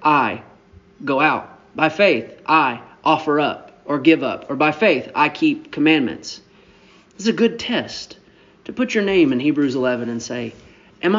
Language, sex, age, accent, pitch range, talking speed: English, male, 30-49, American, 145-180 Hz, 165 wpm